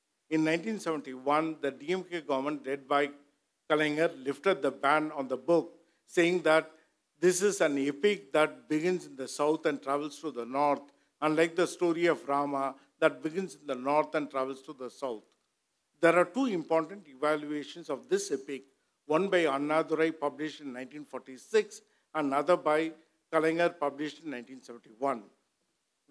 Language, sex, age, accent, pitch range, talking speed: Tamil, male, 50-69, native, 140-170 Hz, 150 wpm